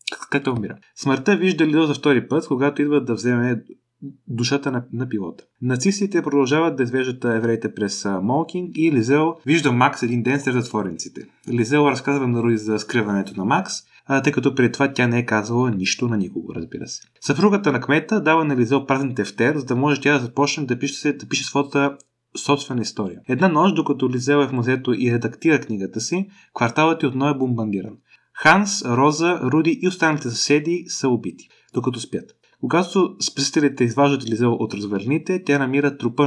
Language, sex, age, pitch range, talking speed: Bulgarian, male, 30-49, 120-150 Hz, 180 wpm